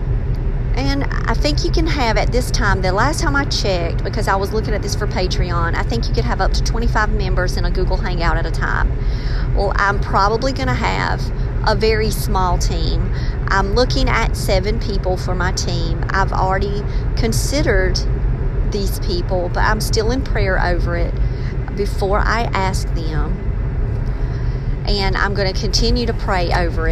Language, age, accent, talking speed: English, 40-59, American, 180 wpm